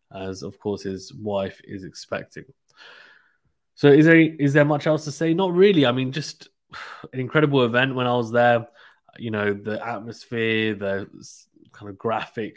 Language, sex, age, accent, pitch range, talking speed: English, male, 20-39, British, 105-120 Hz, 170 wpm